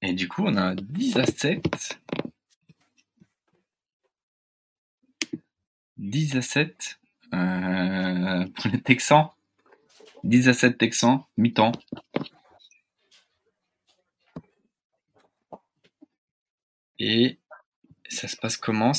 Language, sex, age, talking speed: French, male, 20-39, 80 wpm